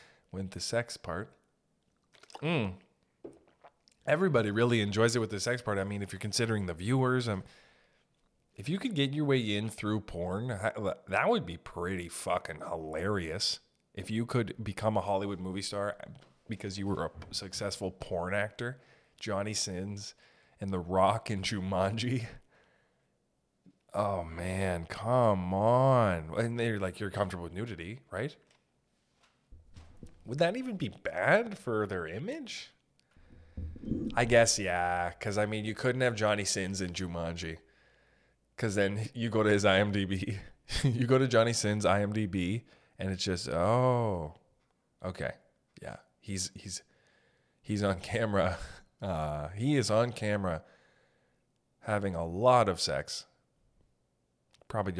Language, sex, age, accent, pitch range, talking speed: English, male, 20-39, American, 90-115 Hz, 135 wpm